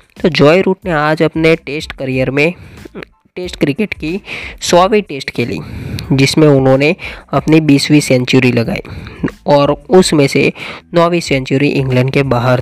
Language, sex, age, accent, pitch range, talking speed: Hindi, female, 20-39, native, 135-160 Hz, 140 wpm